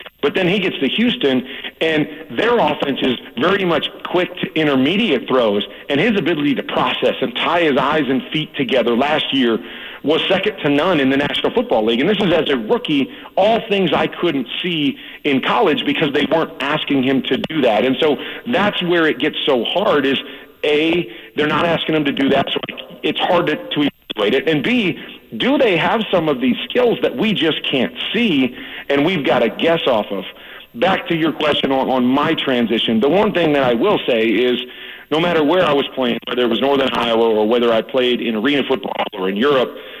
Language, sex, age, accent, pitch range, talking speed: English, male, 40-59, American, 130-170 Hz, 215 wpm